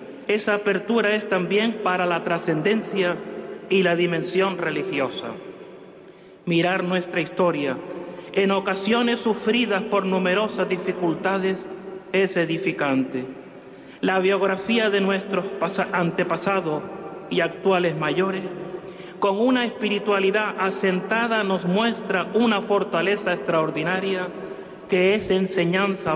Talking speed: 95 wpm